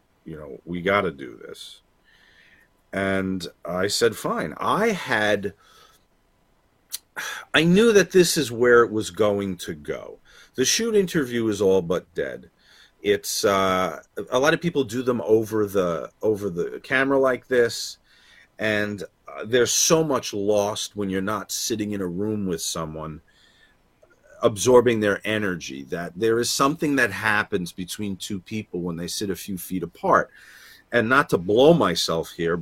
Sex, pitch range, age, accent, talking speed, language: male, 95-125 Hz, 40-59, American, 160 wpm, English